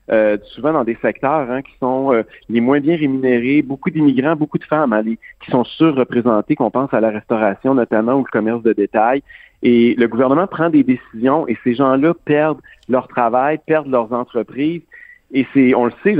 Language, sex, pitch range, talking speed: French, male, 120-150 Hz, 200 wpm